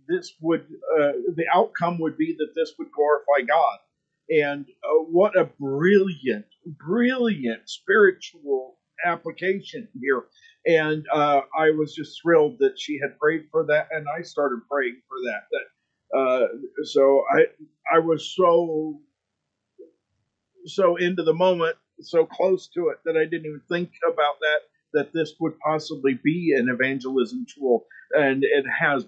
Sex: male